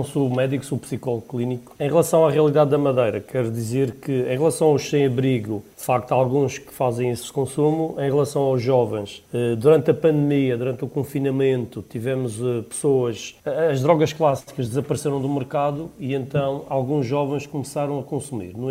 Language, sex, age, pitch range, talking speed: Portuguese, male, 40-59, 125-150 Hz, 165 wpm